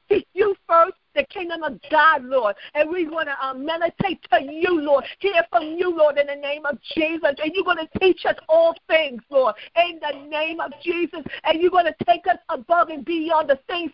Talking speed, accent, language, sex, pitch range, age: 215 wpm, American, English, female, 275-340 Hz, 50-69